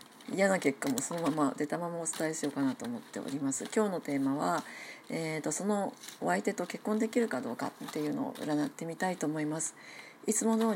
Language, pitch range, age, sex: Japanese, 150-225 Hz, 40-59, female